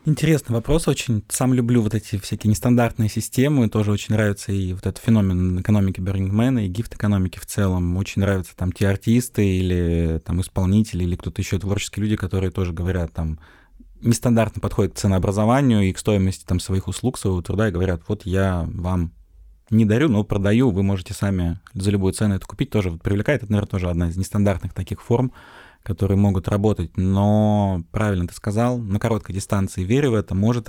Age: 20-39